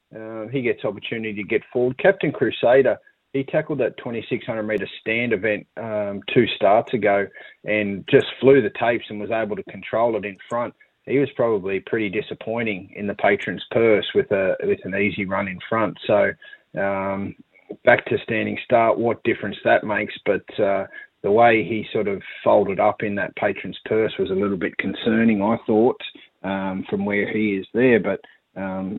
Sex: male